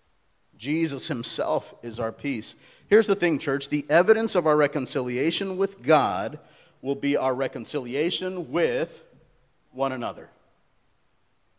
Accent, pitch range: American, 140-195 Hz